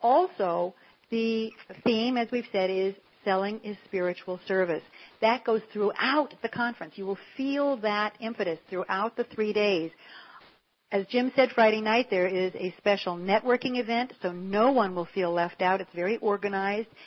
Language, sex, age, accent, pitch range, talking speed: English, female, 60-79, American, 185-230 Hz, 160 wpm